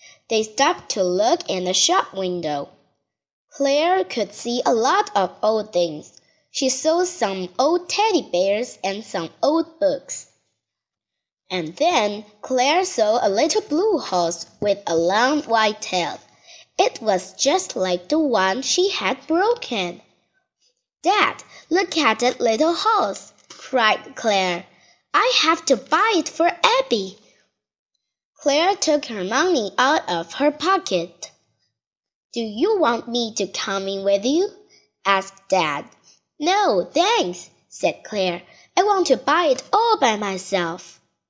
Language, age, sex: Chinese, 20-39, female